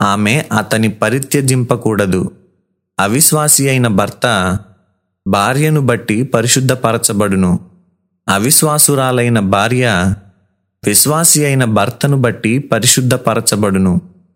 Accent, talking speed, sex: native, 65 wpm, male